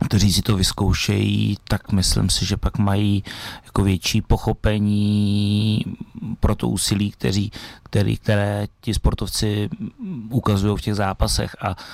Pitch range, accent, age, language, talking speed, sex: 95-105 Hz, native, 30-49, Czech, 120 wpm, male